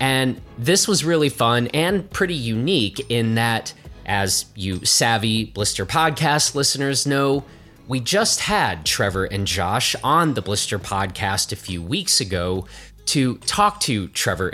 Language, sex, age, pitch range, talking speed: English, male, 30-49, 100-145 Hz, 145 wpm